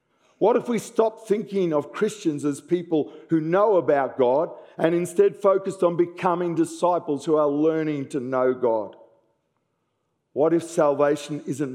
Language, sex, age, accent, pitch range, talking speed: English, male, 50-69, Australian, 135-180 Hz, 150 wpm